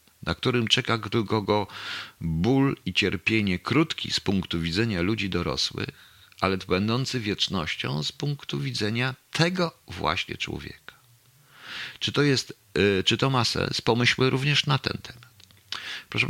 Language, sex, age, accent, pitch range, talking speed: Polish, male, 50-69, native, 95-130 Hz, 120 wpm